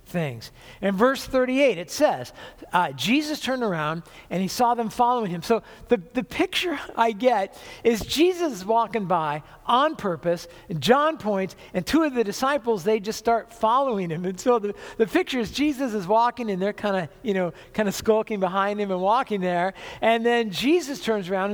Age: 50-69